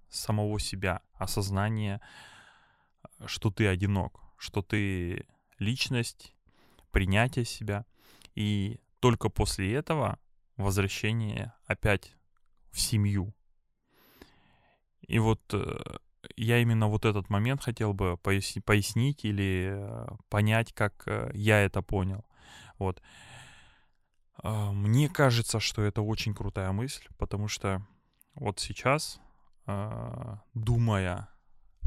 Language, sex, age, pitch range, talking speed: Russian, male, 20-39, 95-115 Hz, 90 wpm